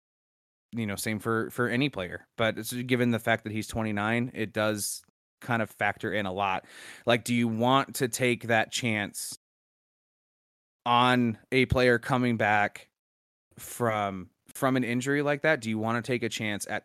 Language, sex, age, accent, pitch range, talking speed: English, male, 20-39, American, 105-130 Hz, 180 wpm